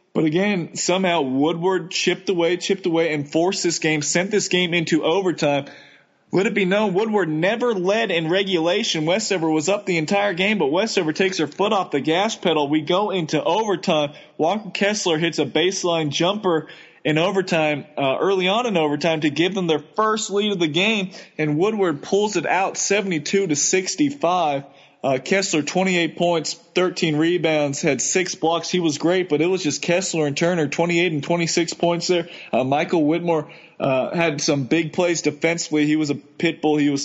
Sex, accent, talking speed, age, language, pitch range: male, American, 185 wpm, 20-39, English, 155-185 Hz